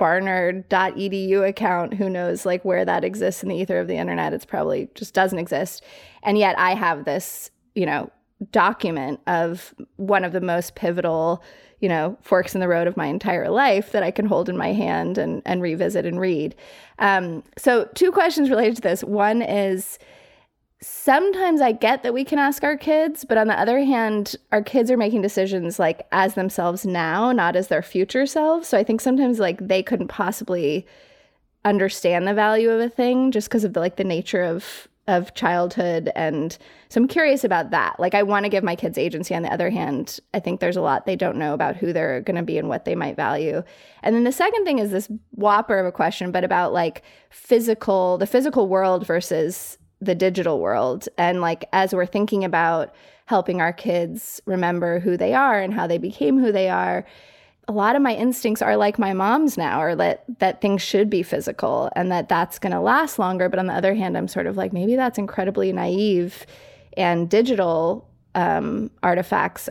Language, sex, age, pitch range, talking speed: English, female, 20-39, 180-225 Hz, 205 wpm